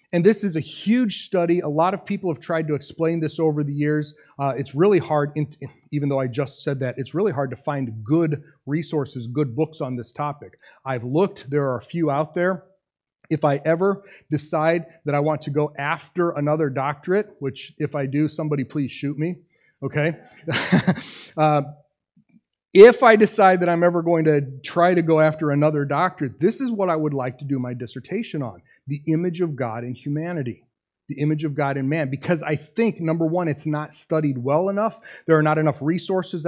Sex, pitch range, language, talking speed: male, 145-195 Hz, English, 200 wpm